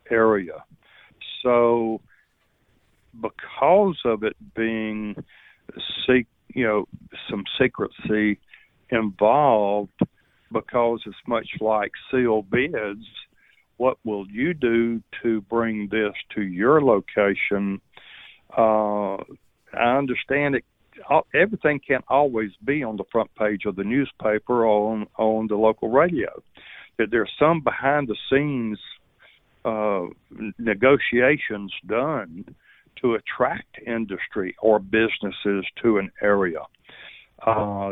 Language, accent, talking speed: English, American, 105 wpm